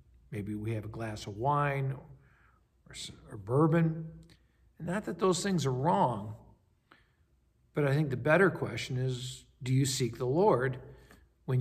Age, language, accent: 50-69, English, American